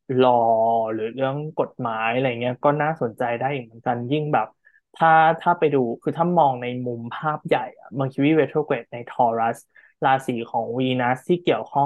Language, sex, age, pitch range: Thai, male, 20-39, 120-150 Hz